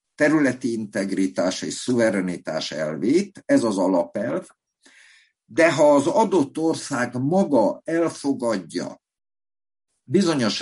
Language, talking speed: Hungarian, 90 wpm